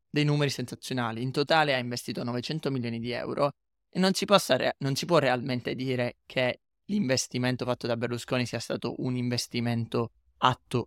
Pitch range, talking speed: 125-155 Hz, 155 wpm